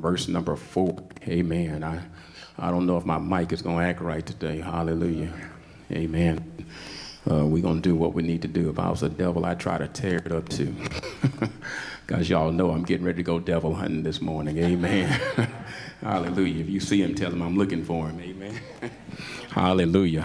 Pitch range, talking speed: 80-95 Hz, 200 wpm